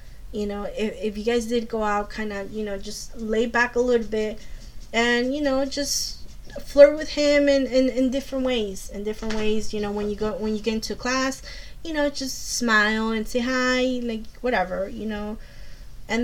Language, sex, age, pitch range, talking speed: English, female, 20-39, 210-235 Hz, 205 wpm